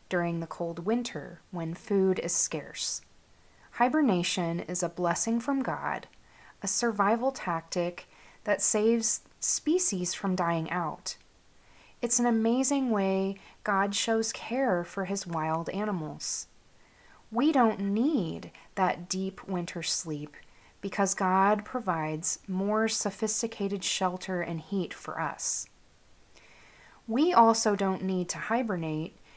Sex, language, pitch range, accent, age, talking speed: female, English, 175-220 Hz, American, 30-49, 115 wpm